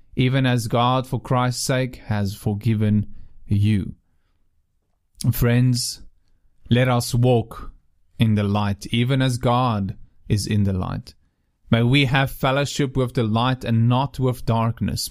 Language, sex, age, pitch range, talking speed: English, male, 30-49, 95-125 Hz, 135 wpm